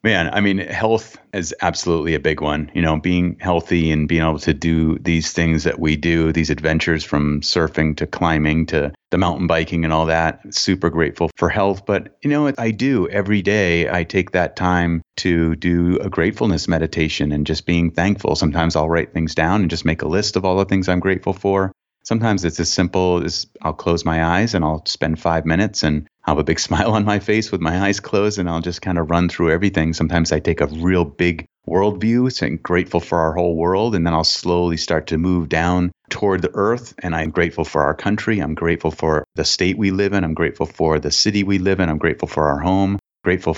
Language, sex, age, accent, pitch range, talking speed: English, male, 30-49, American, 80-95 Hz, 225 wpm